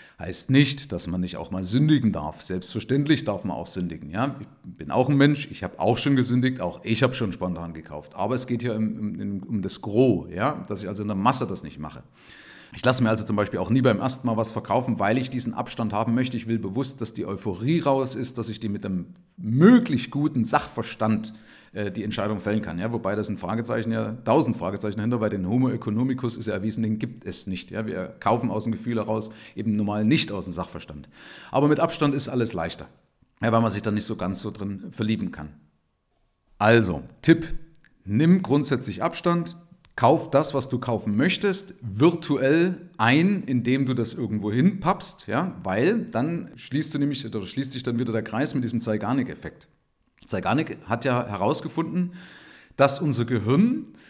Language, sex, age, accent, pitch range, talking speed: German, male, 40-59, German, 105-145 Hz, 195 wpm